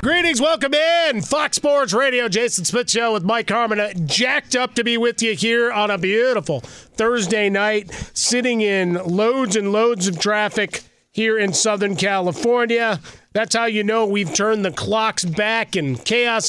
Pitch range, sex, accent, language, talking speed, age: 190-235 Hz, male, American, English, 165 wpm, 30-49